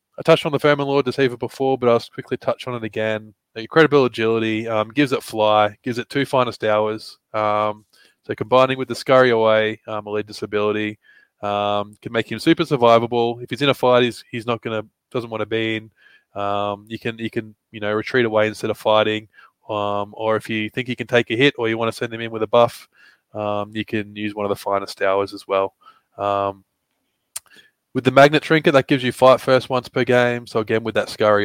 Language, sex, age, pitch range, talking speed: English, male, 20-39, 105-125 Hz, 225 wpm